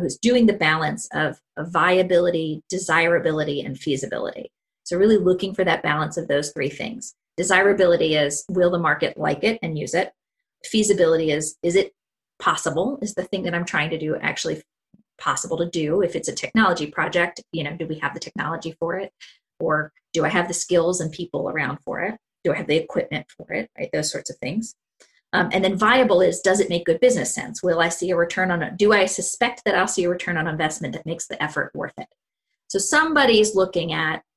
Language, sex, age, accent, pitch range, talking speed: English, female, 30-49, American, 165-200 Hz, 215 wpm